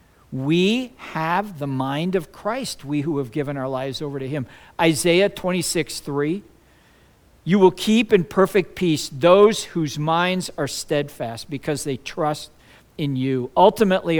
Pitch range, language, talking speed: 140-185 Hz, English, 150 wpm